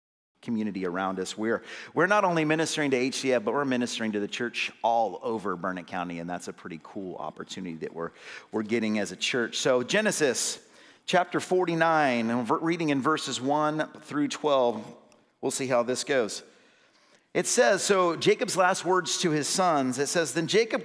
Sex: male